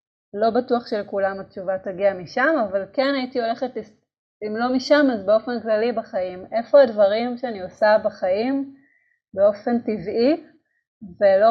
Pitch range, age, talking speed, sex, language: 190-245 Hz, 30-49, 130 wpm, female, Hebrew